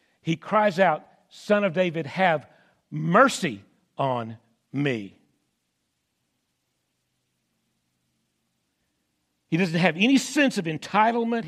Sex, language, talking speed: male, English, 90 wpm